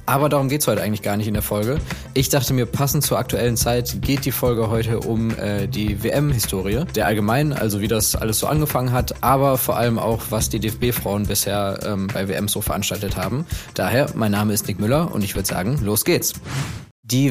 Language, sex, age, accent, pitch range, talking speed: German, male, 20-39, German, 105-125 Hz, 215 wpm